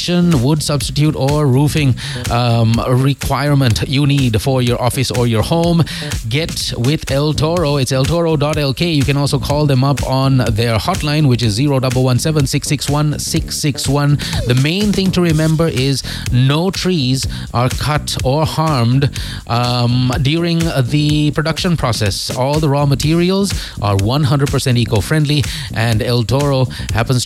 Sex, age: male, 30-49